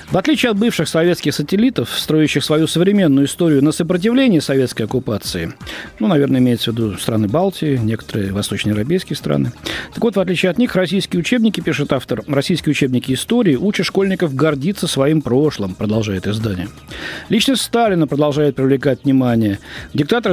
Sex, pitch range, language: male, 125-180 Hz, Russian